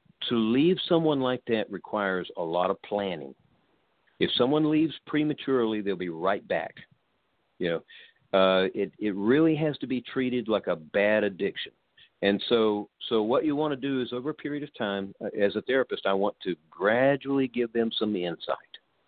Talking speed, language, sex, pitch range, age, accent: 180 wpm, English, male, 100-145 Hz, 50-69, American